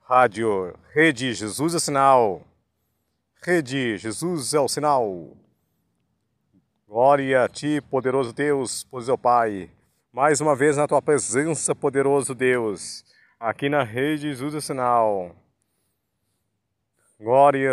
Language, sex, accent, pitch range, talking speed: Portuguese, male, Brazilian, 125-150 Hz, 120 wpm